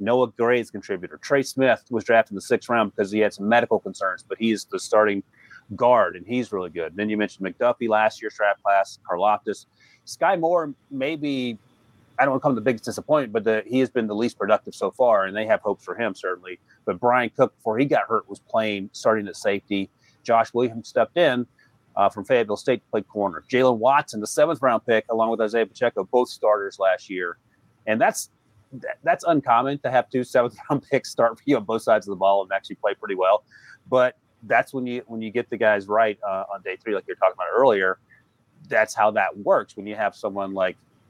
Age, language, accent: 30-49, English, American